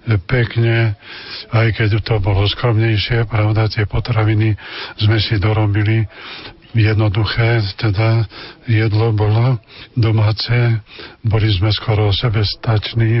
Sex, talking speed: male, 95 wpm